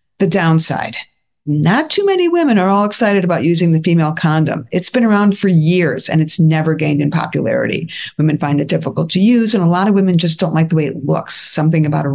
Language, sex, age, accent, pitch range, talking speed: English, female, 50-69, American, 150-180 Hz, 225 wpm